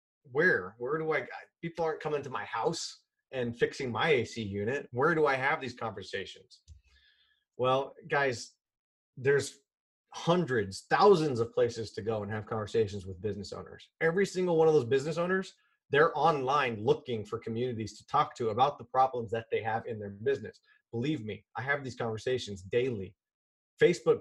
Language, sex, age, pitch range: English, male, 30-49, 115-195 Hz